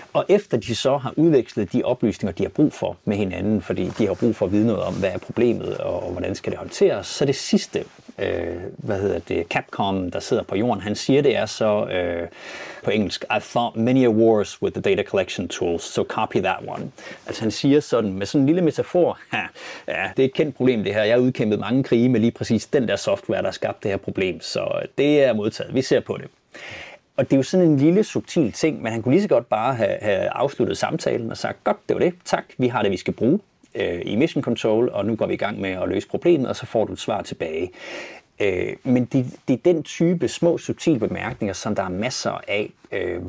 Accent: native